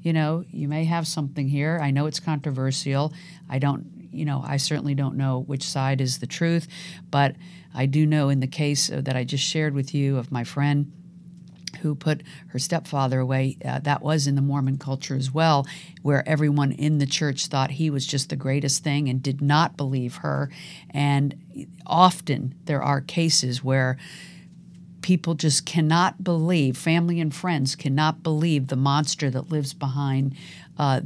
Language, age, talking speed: English, 50-69, 180 wpm